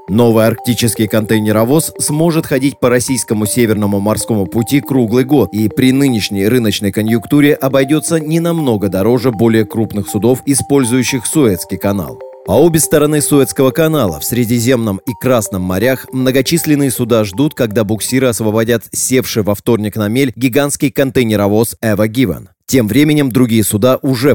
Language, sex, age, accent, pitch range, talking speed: Russian, male, 30-49, native, 110-135 Hz, 140 wpm